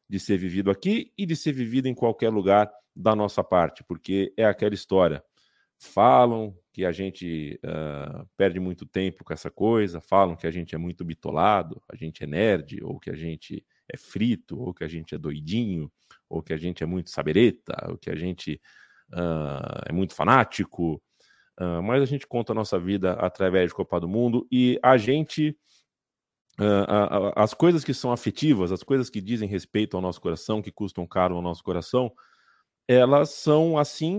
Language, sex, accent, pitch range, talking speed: Portuguese, male, Brazilian, 95-130 Hz, 180 wpm